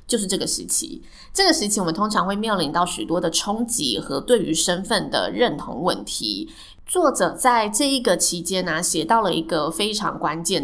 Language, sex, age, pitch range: Chinese, female, 20-39, 170-235 Hz